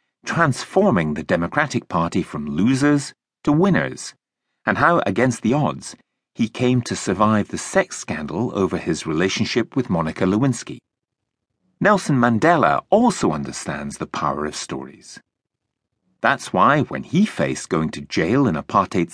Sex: male